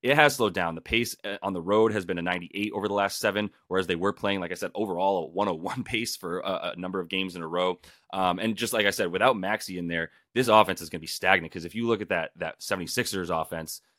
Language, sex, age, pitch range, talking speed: English, male, 30-49, 85-105 Hz, 270 wpm